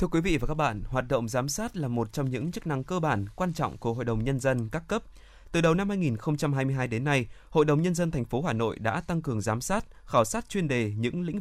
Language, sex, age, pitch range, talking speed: Vietnamese, male, 20-39, 120-160 Hz, 275 wpm